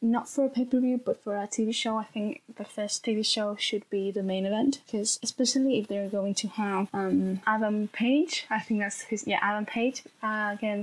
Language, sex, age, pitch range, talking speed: English, female, 10-29, 205-240 Hz, 215 wpm